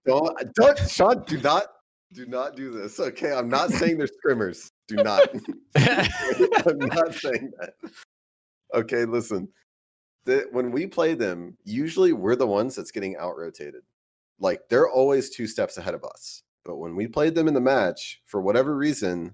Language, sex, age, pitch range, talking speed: English, male, 30-49, 95-150 Hz, 175 wpm